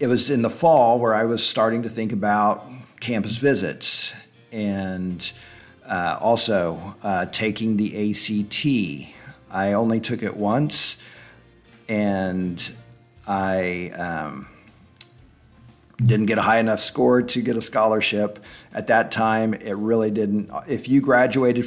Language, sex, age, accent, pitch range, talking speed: English, male, 50-69, American, 100-120 Hz, 135 wpm